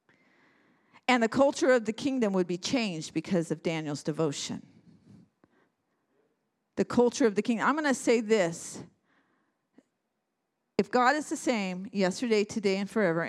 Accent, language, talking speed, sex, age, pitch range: American, English, 145 wpm, female, 50-69, 215-290 Hz